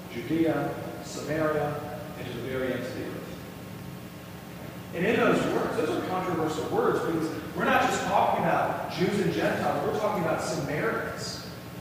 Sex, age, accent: male, 40-59, American